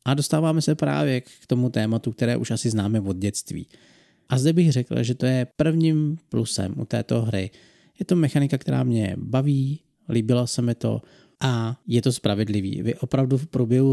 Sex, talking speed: male, 185 wpm